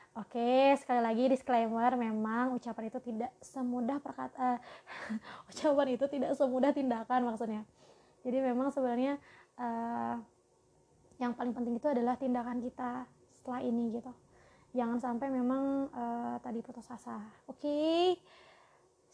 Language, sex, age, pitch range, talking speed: Indonesian, female, 20-39, 235-260 Hz, 130 wpm